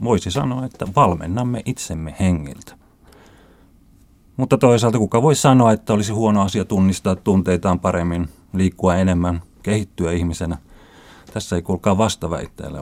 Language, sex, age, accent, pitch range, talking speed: Finnish, male, 30-49, native, 90-115 Hz, 120 wpm